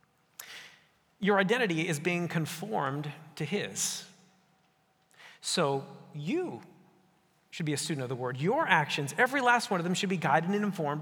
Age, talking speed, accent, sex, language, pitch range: 40-59, 150 wpm, American, male, English, 150-205 Hz